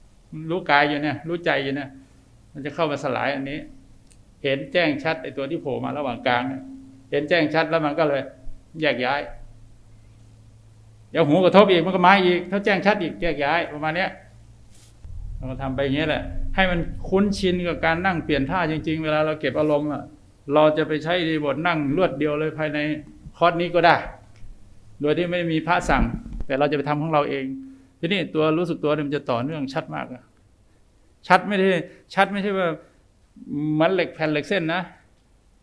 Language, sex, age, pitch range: Thai, male, 60-79, 130-170 Hz